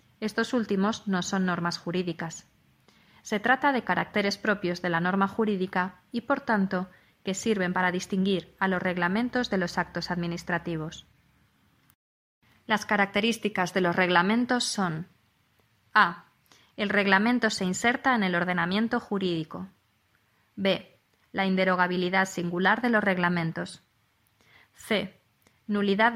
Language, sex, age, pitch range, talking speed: Spanish, female, 20-39, 180-215 Hz, 120 wpm